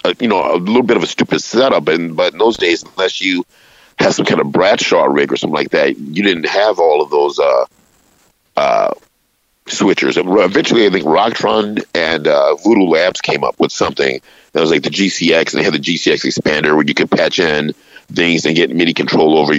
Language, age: English, 50-69